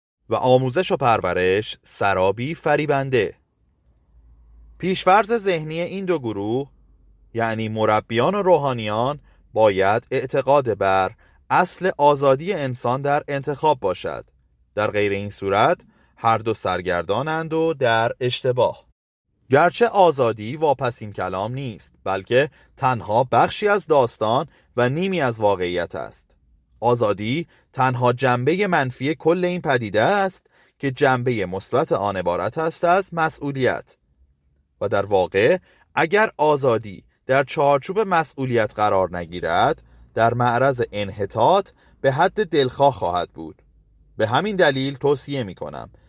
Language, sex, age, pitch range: Persian, male, 30-49, 100-150 Hz